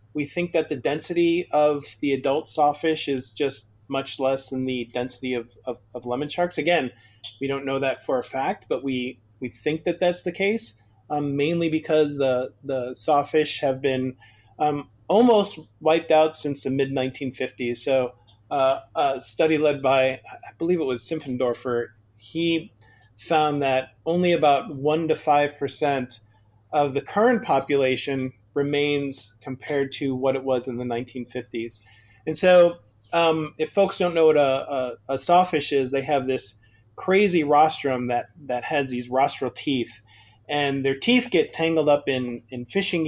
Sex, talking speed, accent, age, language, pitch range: male, 165 wpm, American, 30-49, English, 125-155 Hz